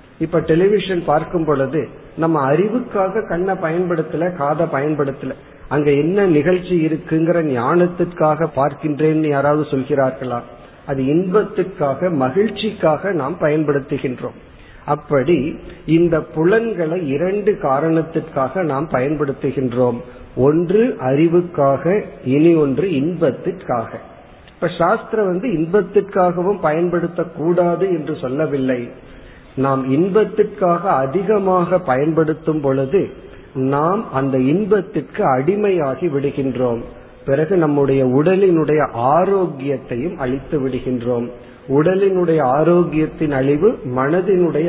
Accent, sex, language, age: native, male, Tamil, 50-69